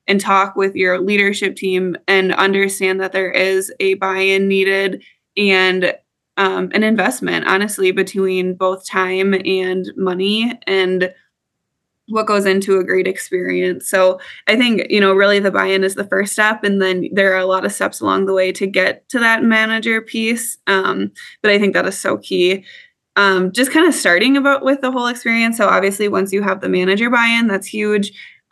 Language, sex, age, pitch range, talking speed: English, female, 20-39, 190-210 Hz, 185 wpm